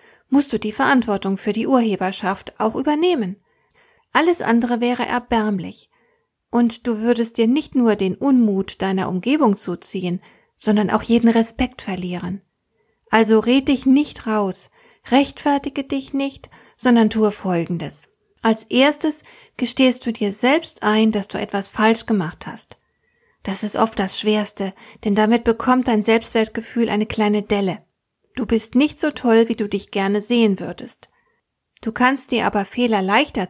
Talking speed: 150 wpm